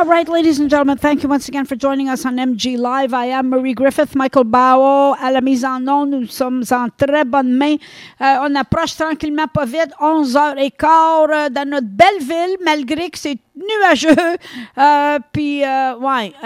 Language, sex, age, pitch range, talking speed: French, female, 50-69, 260-315 Hz, 180 wpm